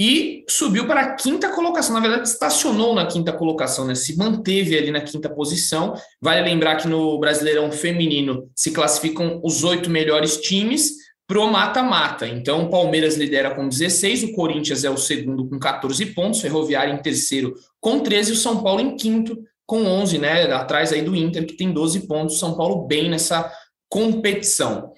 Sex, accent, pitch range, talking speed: male, Brazilian, 160-220 Hz, 180 wpm